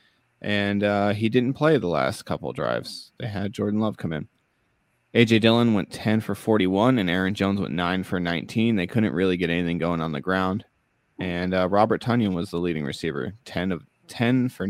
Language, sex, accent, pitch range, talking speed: English, male, American, 95-115 Hz, 200 wpm